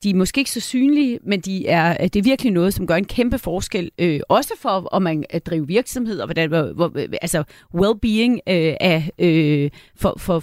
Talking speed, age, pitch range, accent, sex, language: 195 wpm, 40-59, 170-220 Hz, native, female, Danish